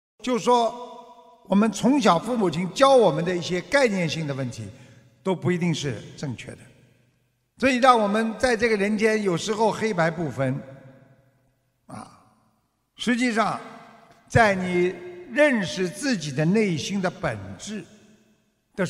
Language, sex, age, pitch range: Chinese, male, 60-79, 140-215 Hz